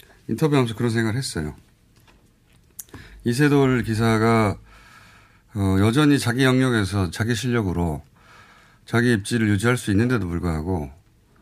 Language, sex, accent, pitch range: Korean, male, native, 95-130 Hz